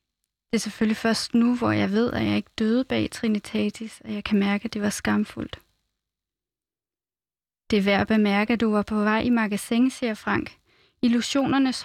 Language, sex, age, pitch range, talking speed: Danish, female, 20-39, 215-240 Hz, 185 wpm